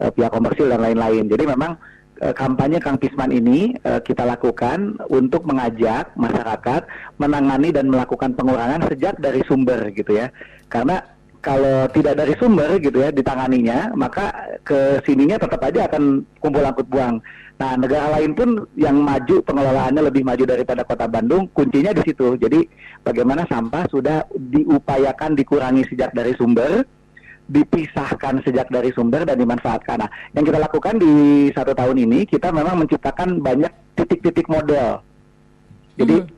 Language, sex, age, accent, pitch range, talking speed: Indonesian, male, 40-59, native, 125-160 Hz, 145 wpm